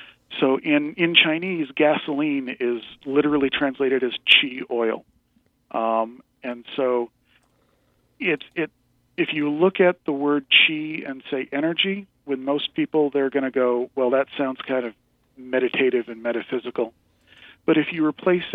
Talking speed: 145 wpm